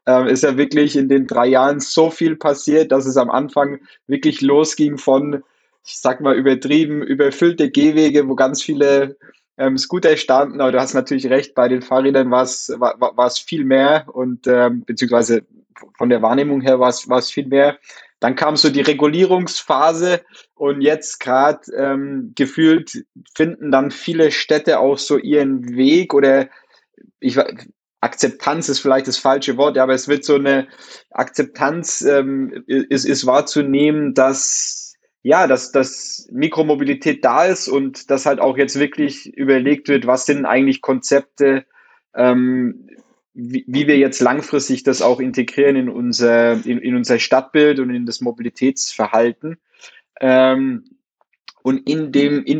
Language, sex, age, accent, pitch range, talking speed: German, male, 20-39, German, 130-150 Hz, 145 wpm